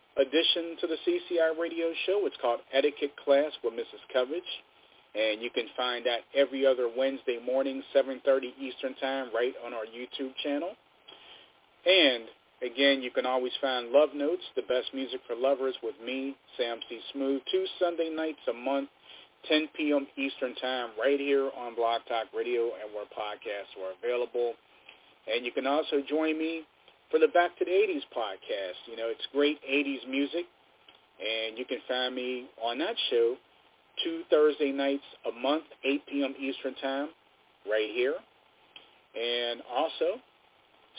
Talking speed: 160 wpm